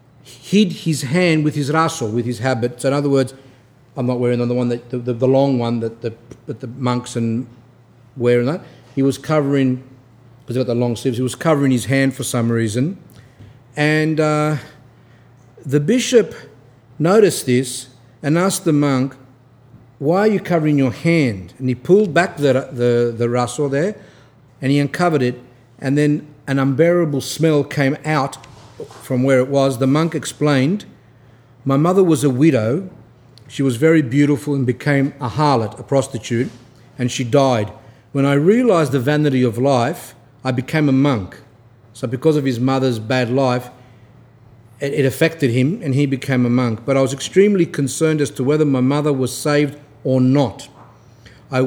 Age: 50-69